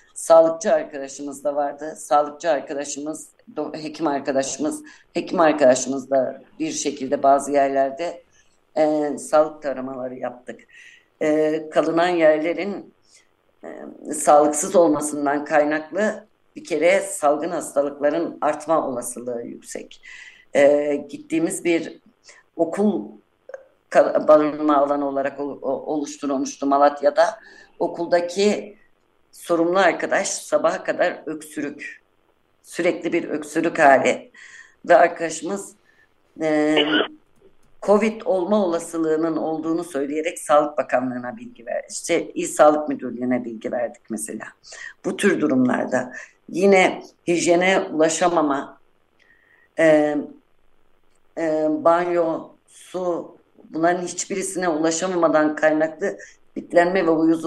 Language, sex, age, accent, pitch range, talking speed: Turkish, female, 60-79, native, 145-175 Hz, 90 wpm